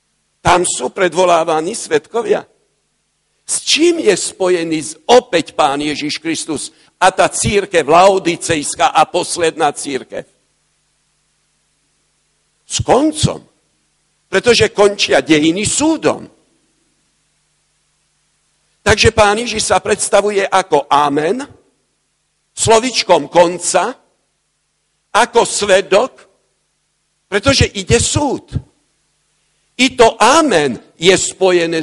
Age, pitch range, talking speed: 50-69, 160-225 Hz, 85 wpm